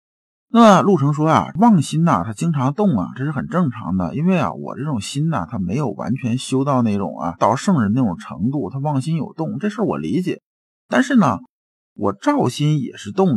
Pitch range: 130-195 Hz